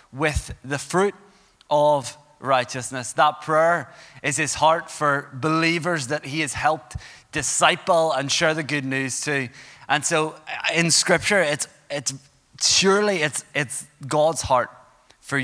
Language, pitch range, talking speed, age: English, 125-155 Hz, 135 wpm, 20-39